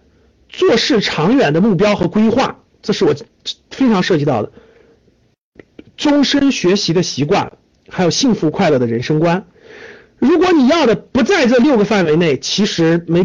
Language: Chinese